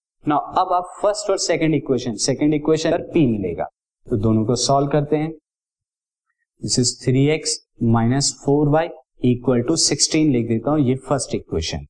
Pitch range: 120-150 Hz